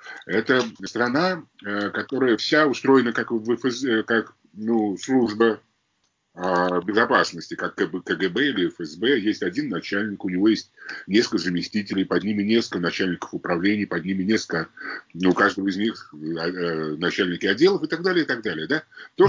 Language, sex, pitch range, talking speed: English, male, 90-120 Hz, 135 wpm